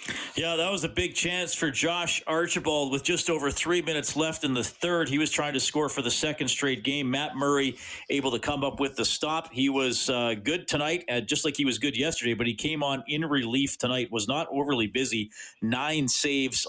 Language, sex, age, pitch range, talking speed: English, male, 40-59, 125-165 Hz, 220 wpm